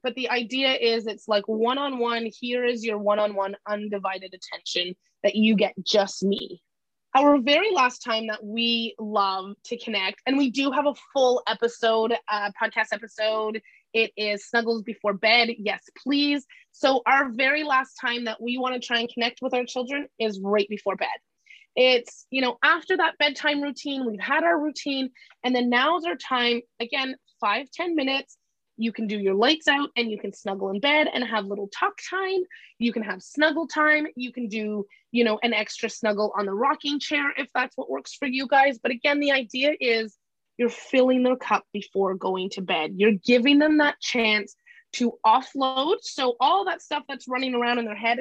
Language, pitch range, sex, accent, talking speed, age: English, 220-280 Hz, female, American, 190 wpm, 20-39